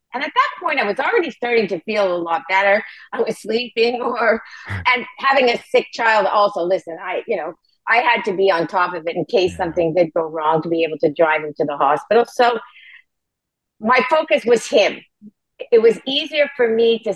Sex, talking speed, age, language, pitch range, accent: female, 215 wpm, 50-69, English, 190-255 Hz, American